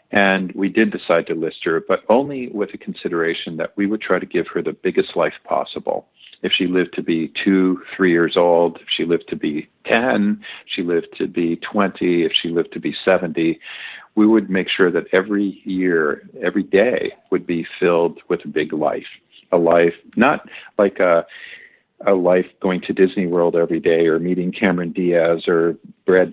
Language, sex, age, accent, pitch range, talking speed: English, male, 50-69, American, 85-105 Hz, 190 wpm